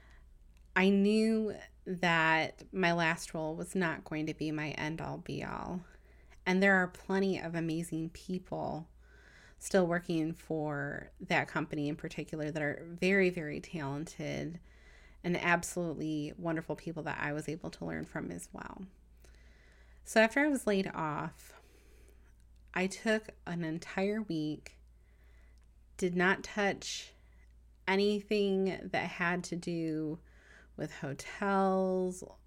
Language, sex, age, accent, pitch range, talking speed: English, female, 20-39, American, 145-180 Hz, 125 wpm